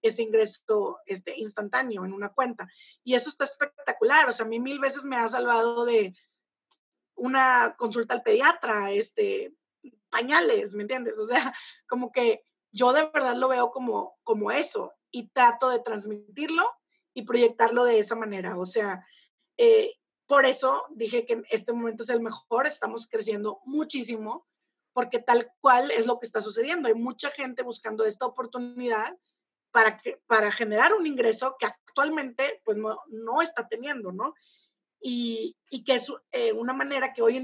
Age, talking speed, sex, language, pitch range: 30-49, 165 wpm, female, Spanish, 230-320 Hz